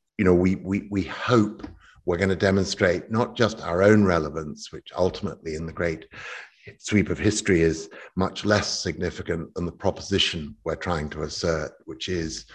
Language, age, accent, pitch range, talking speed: English, 50-69, British, 85-100 Hz, 170 wpm